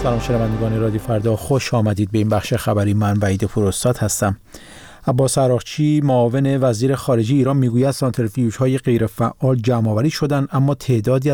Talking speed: 150 wpm